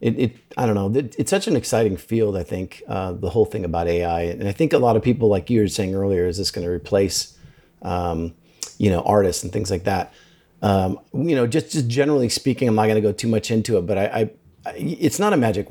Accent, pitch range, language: American, 100-115 Hz, English